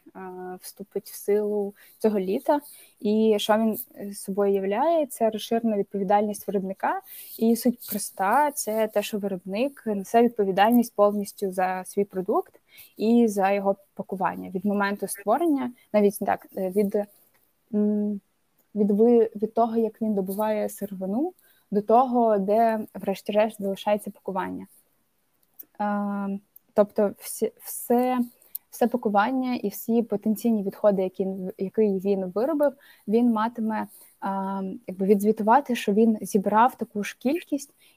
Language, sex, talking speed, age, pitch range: Ukrainian, female, 120 wpm, 20-39, 200-230 Hz